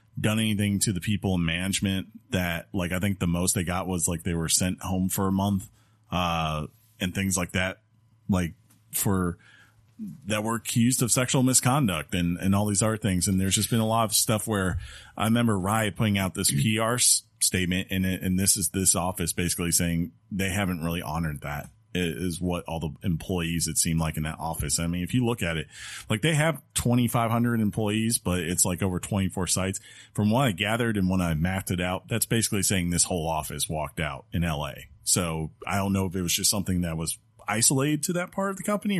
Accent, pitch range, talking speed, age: American, 90-110 Hz, 220 wpm, 30-49